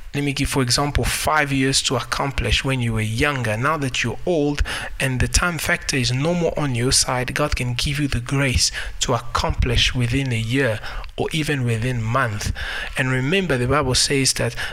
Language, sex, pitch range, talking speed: English, male, 115-145 Hz, 200 wpm